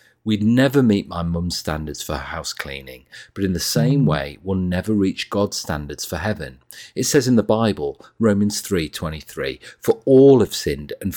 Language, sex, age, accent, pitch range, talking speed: English, male, 40-59, British, 75-110 Hz, 185 wpm